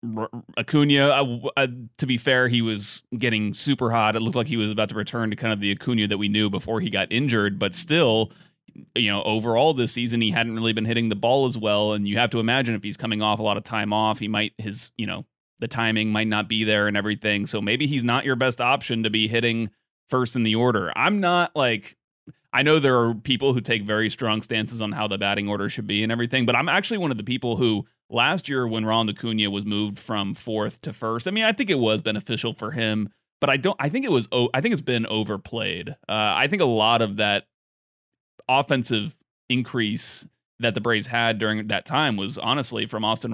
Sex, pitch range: male, 105-125 Hz